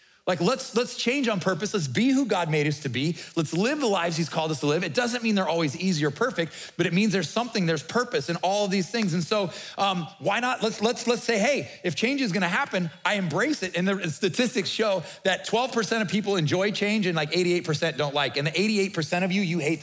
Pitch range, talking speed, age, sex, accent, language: 175-225 Hz, 255 wpm, 30-49, male, American, English